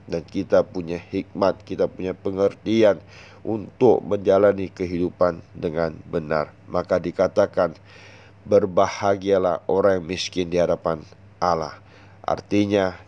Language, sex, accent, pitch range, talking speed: Indonesian, male, native, 85-100 Hz, 100 wpm